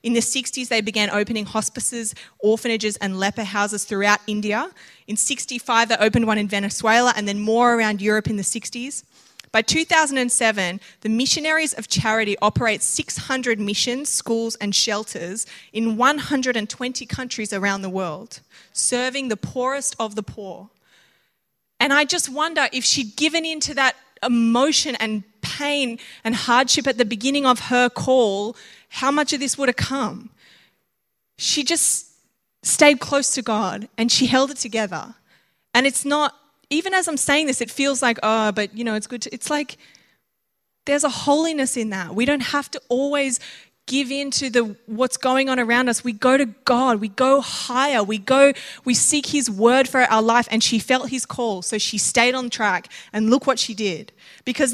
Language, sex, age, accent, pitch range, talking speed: English, female, 20-39, Australian, 215-270 Hz, 175 wpm